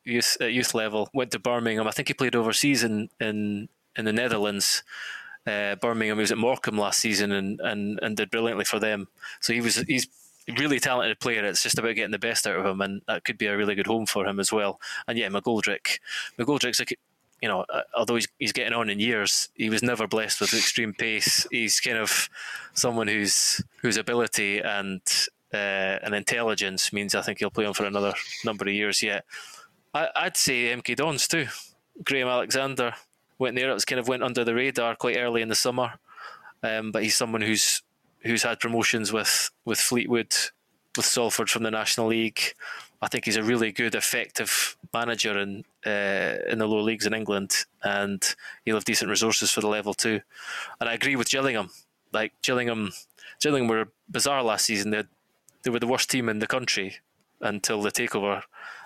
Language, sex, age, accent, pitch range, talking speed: English, male, 20-39, British, 105-120 Hz, 195 wpm